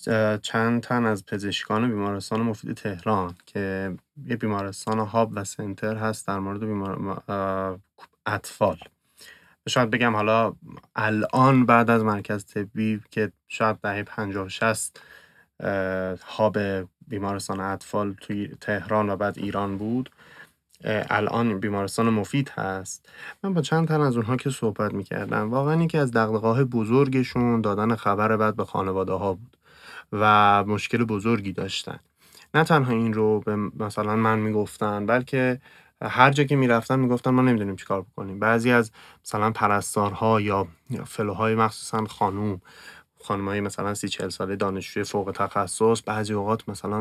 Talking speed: 135 wpm